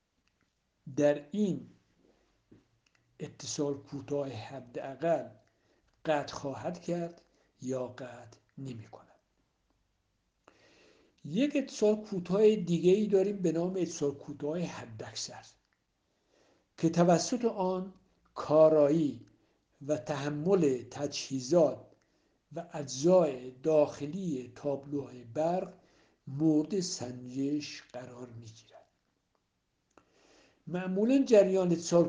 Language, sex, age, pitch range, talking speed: Persian, male, 60-79, 135-175 Hz, 80 wpm